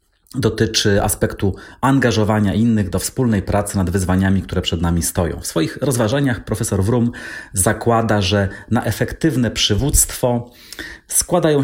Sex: male